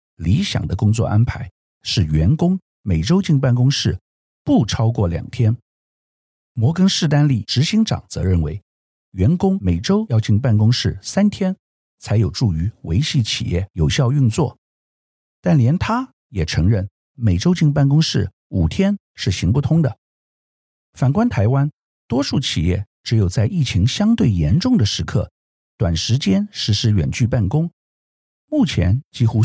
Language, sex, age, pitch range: Chinese, male, 50-69, 90-140 Hz